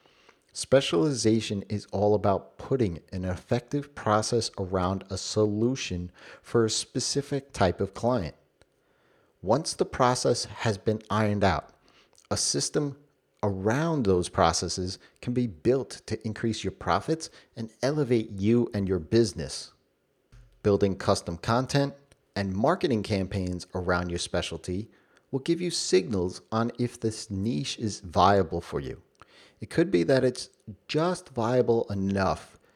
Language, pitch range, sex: English, 95-125 Hz, male